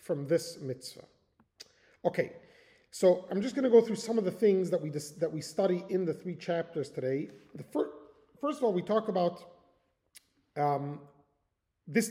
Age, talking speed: 30-49, 180 wpm